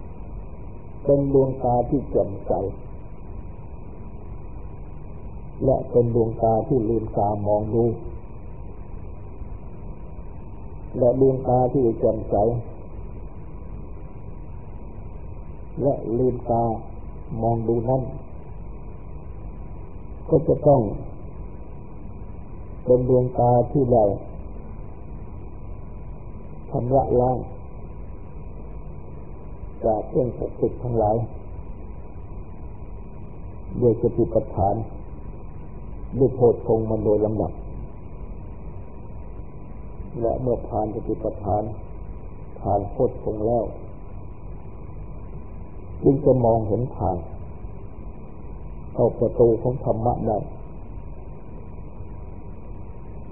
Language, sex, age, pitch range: Thai, male, 50-69, 90-115 Hz